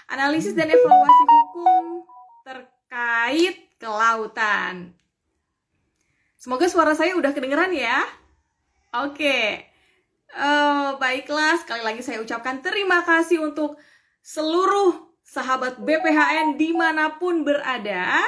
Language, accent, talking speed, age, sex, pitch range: Indonesian, native, 90 wpm, 20-39, female, 225-330 Hz